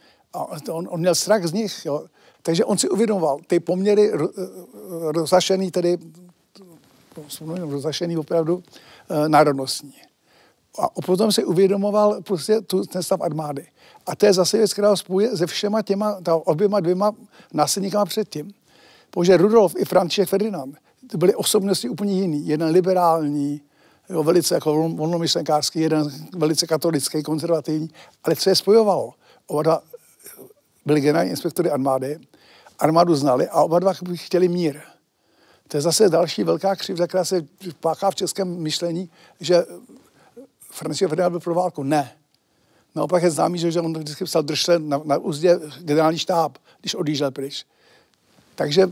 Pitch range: 155-190 Hz